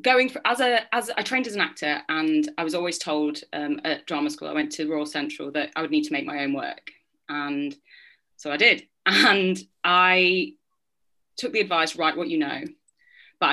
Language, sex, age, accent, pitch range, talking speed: English, female, 30-49, British, 150-245 Hz, 215 wpm